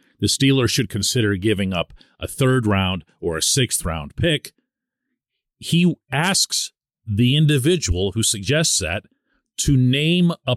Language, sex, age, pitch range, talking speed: English, male, 40-59, 100-150 Hz, 135 wpm